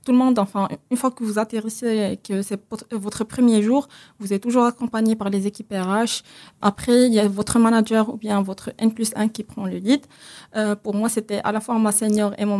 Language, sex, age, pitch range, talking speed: French, female, 20-39, 205-235 Hz, 230 wpm